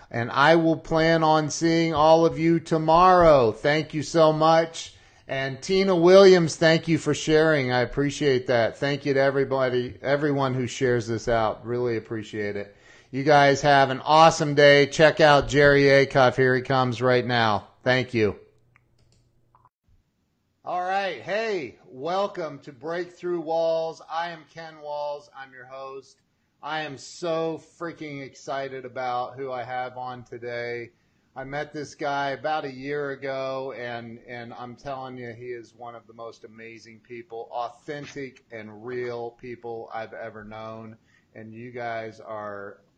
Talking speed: 155 wpm